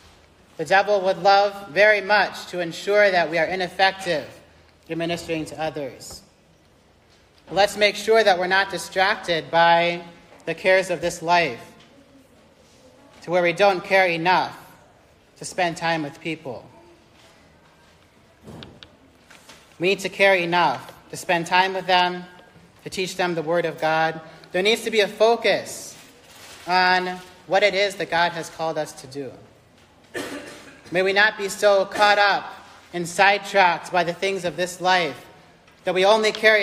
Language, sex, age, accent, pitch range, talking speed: English, male, 40-59, American, 155-190 Hz, 150 wpm